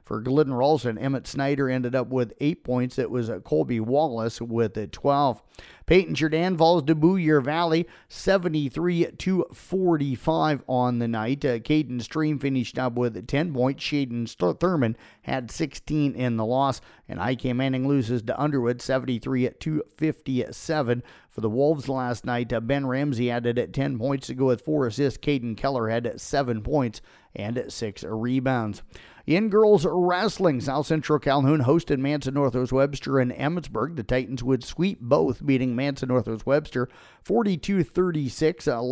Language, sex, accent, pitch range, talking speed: English, male, American, 120-150 Hz, 145 wpm